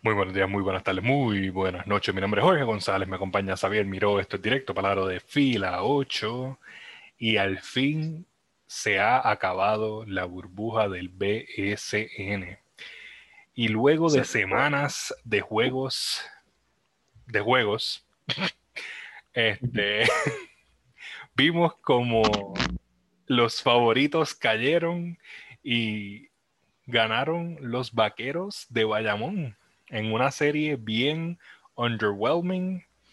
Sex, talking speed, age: male, 105 wpm, 30-49